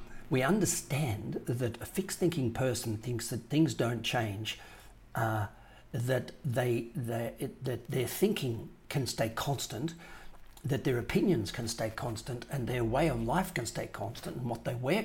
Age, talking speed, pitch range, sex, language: 60-79, 155 wpm, 115-160 Hz, male, English